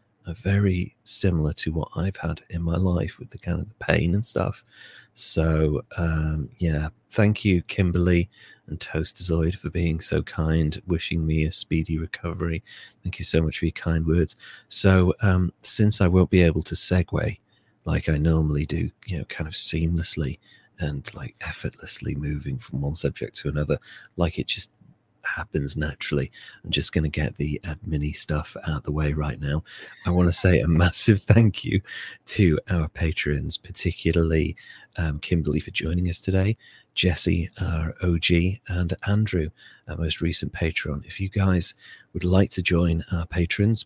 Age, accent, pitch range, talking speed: 40-59, British, 80-95 Hz, 170 wpm